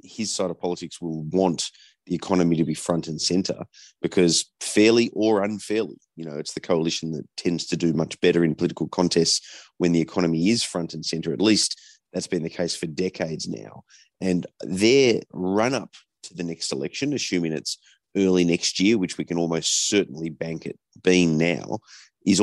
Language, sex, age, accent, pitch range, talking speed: English, male, 30-49, Australian, 80-95 Hz, 185 wpm